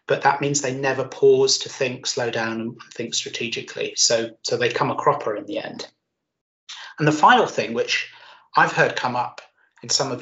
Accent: British